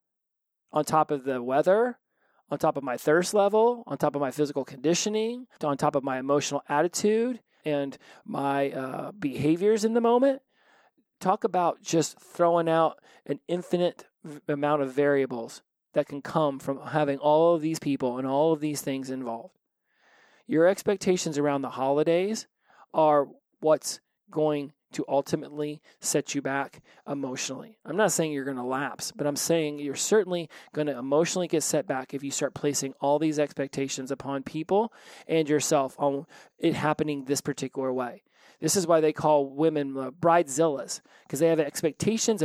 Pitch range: 140-180 Hz